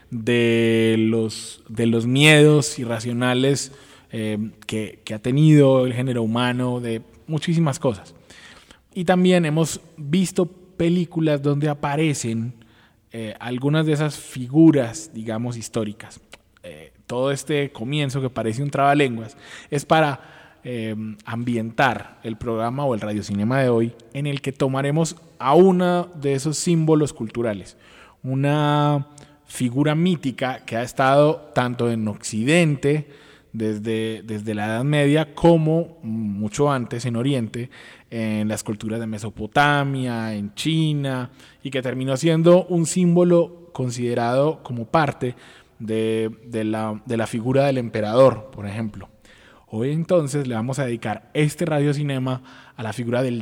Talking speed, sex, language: 130 wpm, male, Spanish